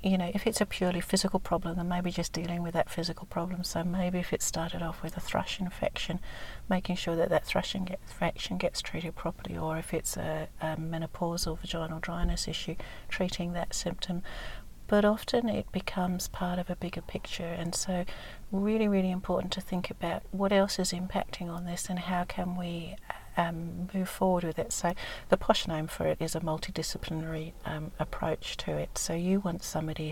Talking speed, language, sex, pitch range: 190 wpm, English, female, 165-185 Hz